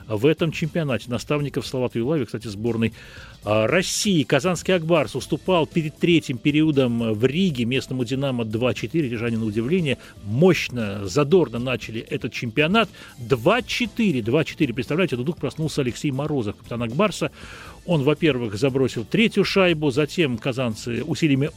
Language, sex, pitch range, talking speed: Russian, male, 125-170 Hz, 130 wpm